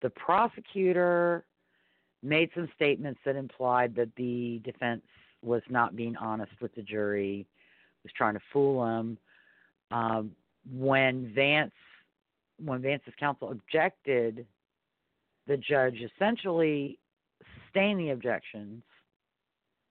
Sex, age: female, 50-69